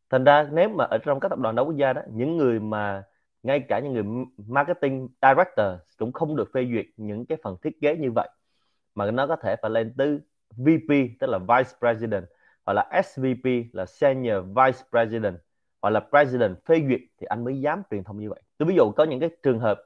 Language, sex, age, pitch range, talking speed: Vietnamese, male, 20-39, 115-145 Hz, 225 wpm